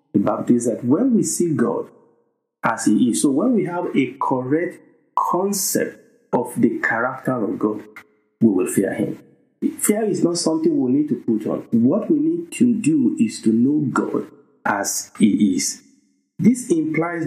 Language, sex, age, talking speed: English, male, 50-69, 170 wpm